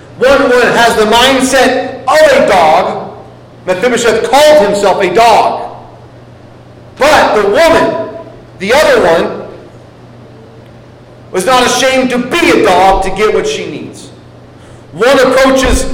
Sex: male